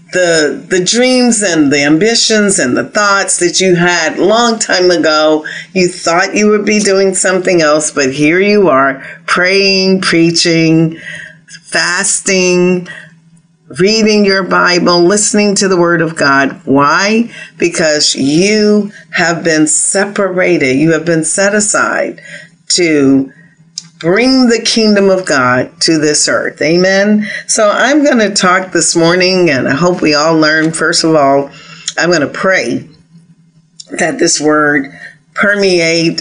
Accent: American